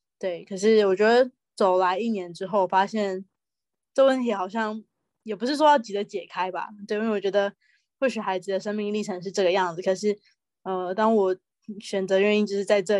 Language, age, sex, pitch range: Chinese, 20-39, female, 190-220 Hz